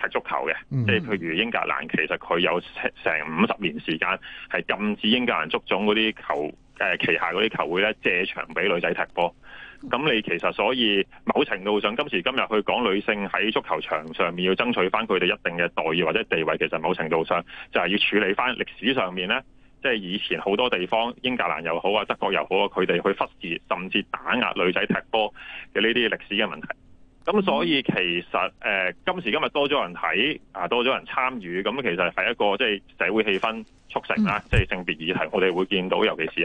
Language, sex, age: Chinese, male, 30-49